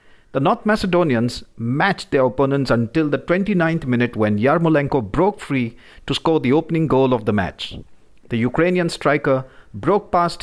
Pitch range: 115-160 Hz